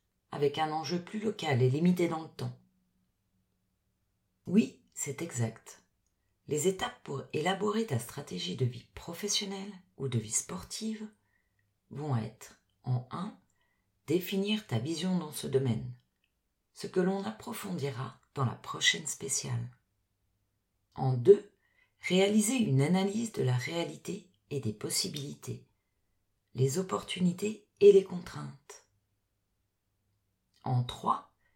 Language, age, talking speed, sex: French, 40-59, 120 wpm, female